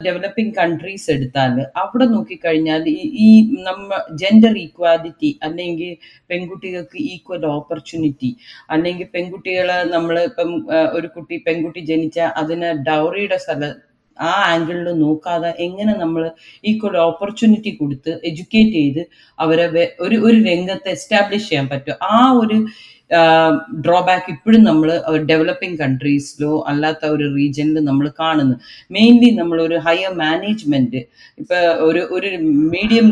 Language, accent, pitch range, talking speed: Malayalam, native, 160-220 Hz, 110 wpm